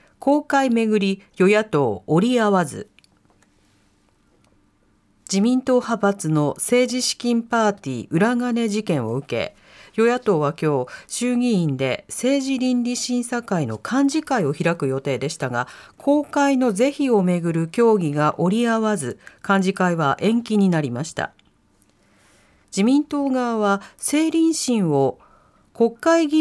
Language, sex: Japanese, female